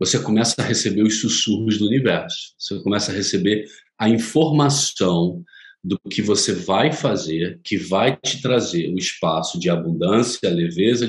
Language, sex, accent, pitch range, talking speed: Portuguese, male, Brazilian, 95-130 Hz, 155 wpm